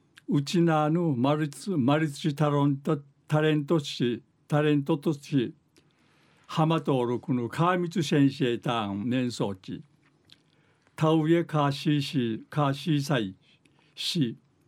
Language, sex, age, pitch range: Japanese, male, 60-79, 140-165 Hz